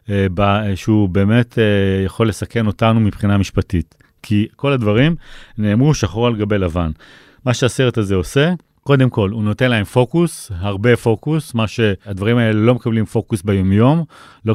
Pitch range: 105-130 Hz